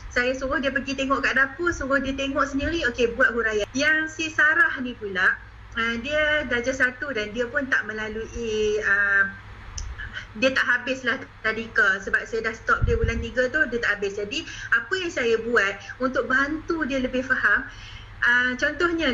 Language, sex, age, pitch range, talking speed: Malay, female, 30-49, 245-305 Hz, 180 wpm